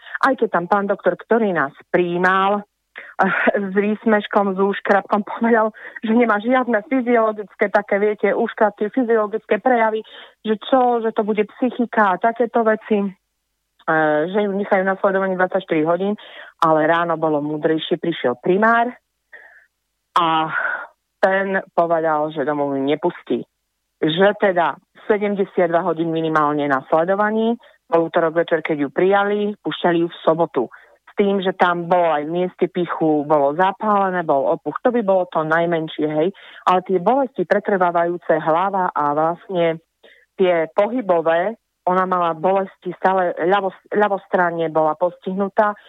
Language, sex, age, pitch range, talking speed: Slovak, female, 30-49, 165-210 Hz, 130 wpm